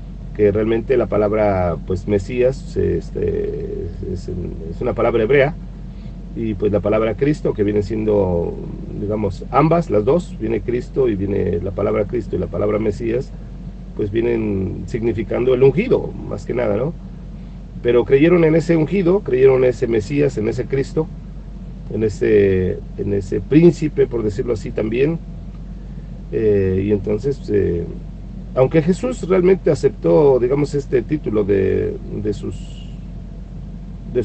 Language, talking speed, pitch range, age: Spanish, 135 wpm, 105-165 Hz, 50-69